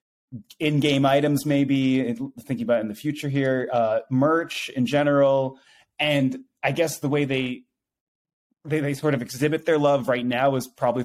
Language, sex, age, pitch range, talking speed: English, male, 20-39, 120-150 Hz, 165 wpm